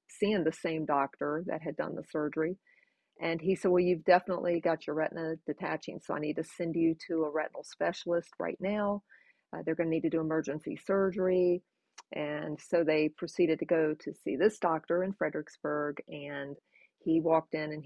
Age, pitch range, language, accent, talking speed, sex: 40-59, 155-180 Hz, English, American, 190 wpm, female